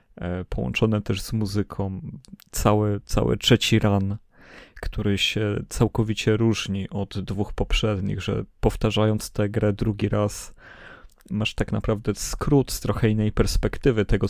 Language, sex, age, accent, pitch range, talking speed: Polish, male, 30-49, native, 95-110 Hz, 125 wpm